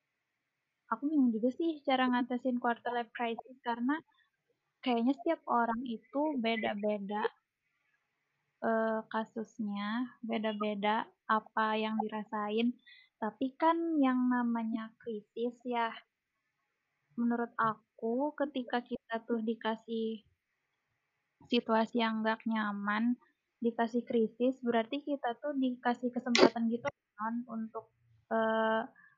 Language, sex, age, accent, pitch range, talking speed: Indonesian, female, 20-39, native, 225-260 Hz, 100 wpm